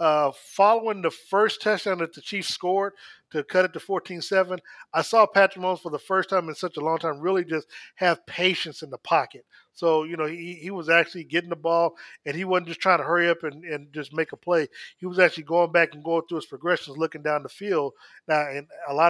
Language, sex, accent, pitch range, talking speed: English, male, American, 150-175 Hz, 240 wpm